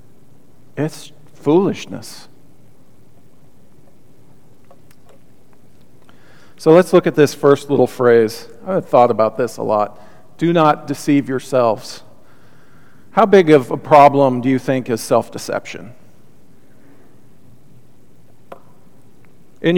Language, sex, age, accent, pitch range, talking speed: English, male, 40-59, American, 125-150 Hz, 95 wpm